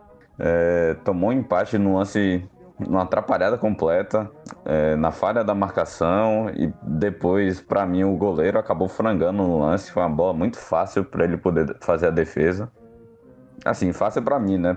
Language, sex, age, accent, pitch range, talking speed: Portuguese, male, 20-39, Brazilian, 95-125 Hz, 165 wpm